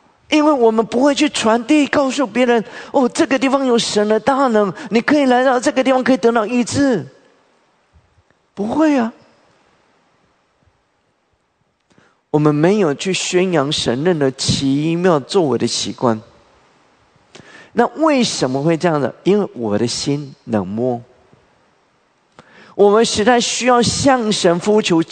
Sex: male